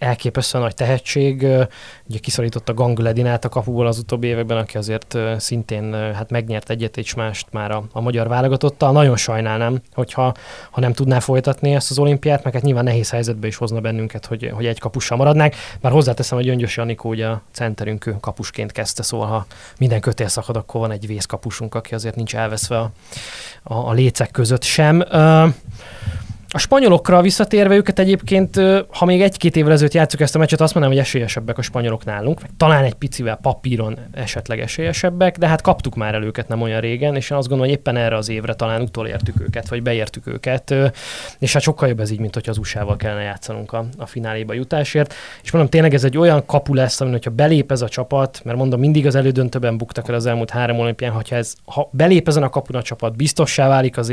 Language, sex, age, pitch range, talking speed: Hungarian, male, 20-39, 115-140 Hz, 200 wpm